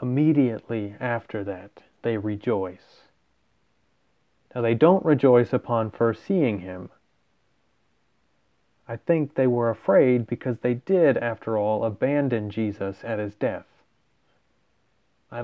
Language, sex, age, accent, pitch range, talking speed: English, male, 30-49, American, 110-125 Hz, 115 wpm